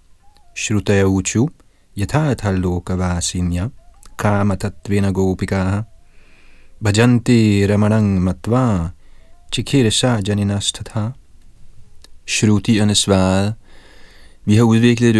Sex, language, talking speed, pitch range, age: male, Danish, 95 wpm, 95-110 Hz, 30-49